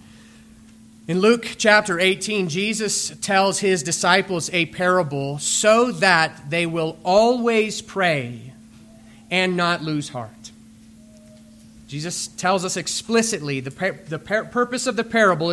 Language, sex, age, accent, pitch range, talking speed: English, male, 30-49, American, 155-200 Hz, 125 wpm